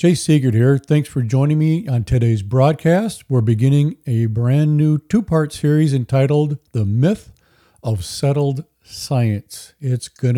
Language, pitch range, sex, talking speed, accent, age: English, 115-150 Hz, male, 145 wpm, American, 40-59